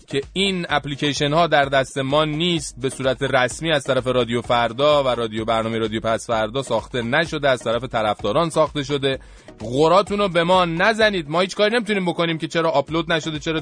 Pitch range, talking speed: 110-150 Hz, 185 wpm